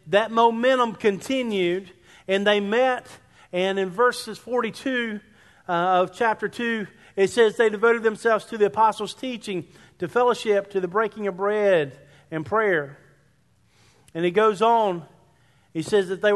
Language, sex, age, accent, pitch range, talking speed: English, male, 40-59, American, 170-220 Hz, 145 wpm